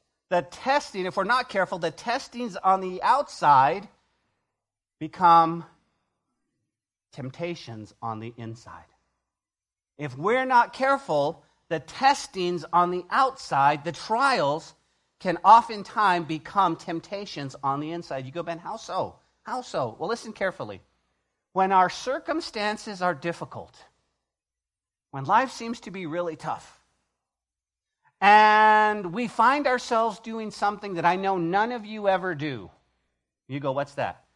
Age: 40-59